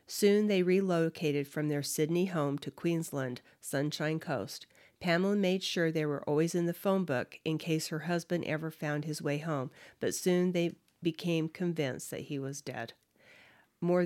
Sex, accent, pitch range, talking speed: female, American, 150-180 Hz, 170 wpm